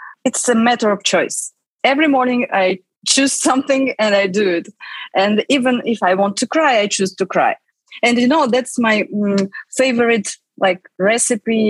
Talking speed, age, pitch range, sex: 170 wpm, 20-39, 200-265 Hz, female